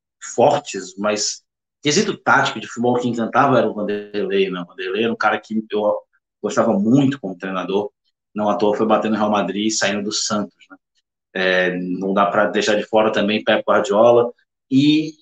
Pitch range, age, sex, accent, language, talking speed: 105-150 Hz, 20-39, male, Brazilian, Portuguese, 175 wpm